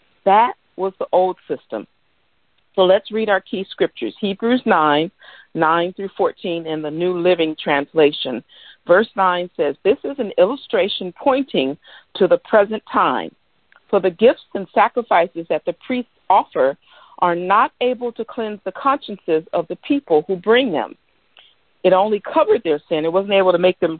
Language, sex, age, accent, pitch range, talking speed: English, female, 50-69, American, 180-255 Hz, 165 wpm